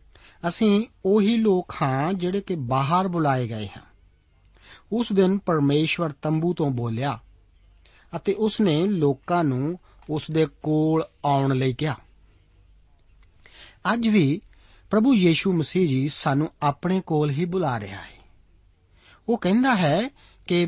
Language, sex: Punjabi, male